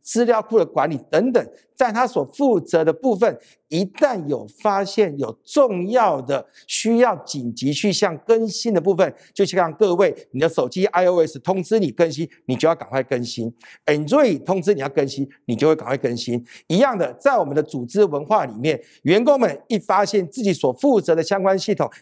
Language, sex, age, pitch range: Chinese, male, 50-69, 145-230 Hz